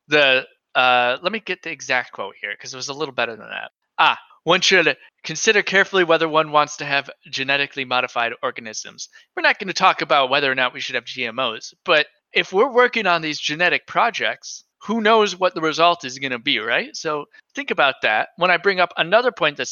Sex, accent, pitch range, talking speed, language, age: male, American, 130-185 Hz, 220 wpm, English, 20-39